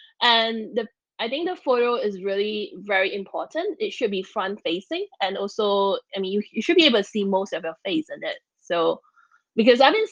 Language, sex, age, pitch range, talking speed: English, female, 10-29, 200-275 Hz, 215 wpm